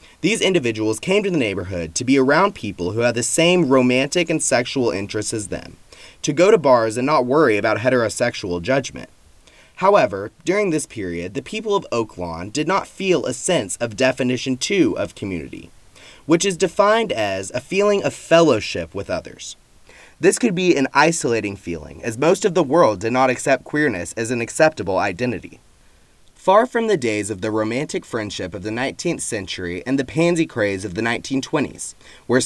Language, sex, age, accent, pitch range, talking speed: English, male, 20-39, American, 105-165 Hz, 180 wpm